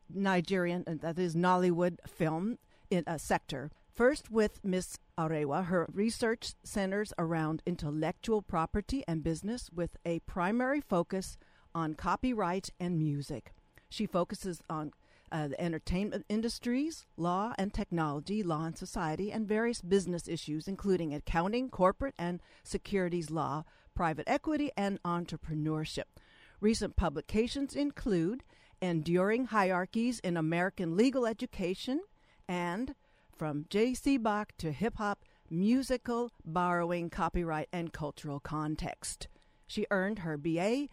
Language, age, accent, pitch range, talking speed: English, 50-69, American, 165-215 Hz, 120 wpm